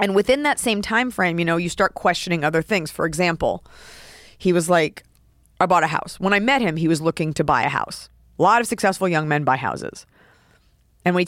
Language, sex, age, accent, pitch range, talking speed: English, female, 30-49, American, 160-230 Hz, 235 wpm